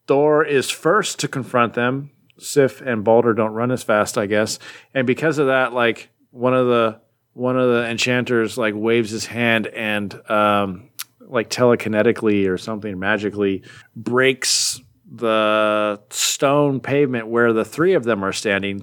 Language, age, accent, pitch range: English, 40-59, American, 105-130 Hz